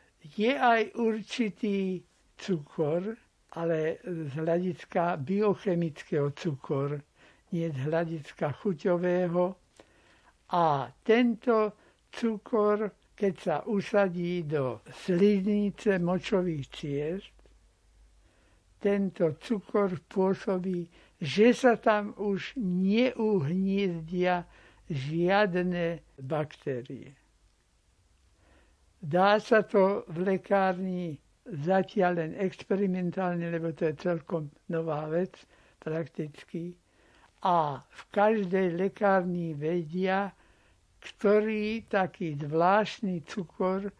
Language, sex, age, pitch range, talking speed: Slovak, male, 60-79, 155-200 Hz, 80 wpm